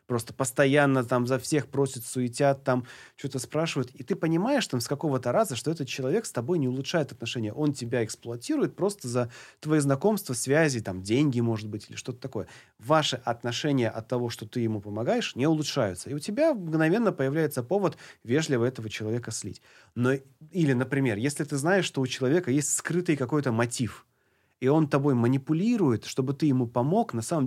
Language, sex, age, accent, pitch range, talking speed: Russian, male, 30-49, native, 120-155 Hz, 180 wpm